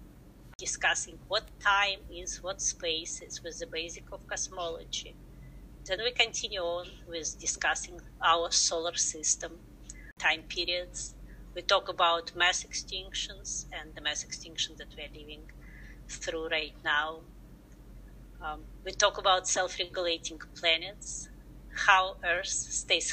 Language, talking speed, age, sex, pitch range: English, 120 wpm, 30-49, female, 160-185 Hz